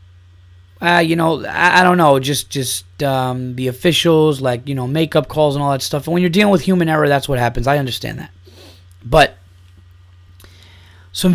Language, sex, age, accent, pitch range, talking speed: English, male, 30-49, American, 115-150 Hz, 190 wpm